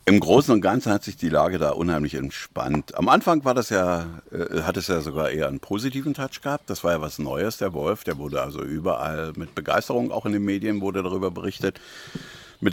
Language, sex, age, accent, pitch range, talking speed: German, male, 50-69, German, 95-120 Hz, 205 wpm